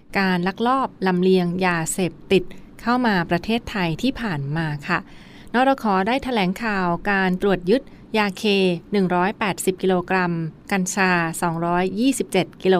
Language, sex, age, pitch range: Thai, female, 20-39, 175-205 Hz